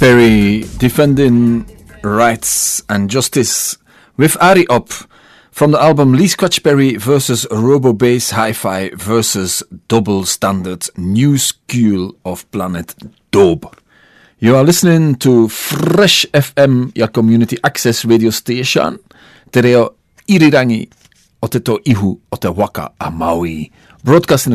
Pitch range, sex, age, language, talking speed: 105-135 Hz, male, 40-59, English, 110 wpm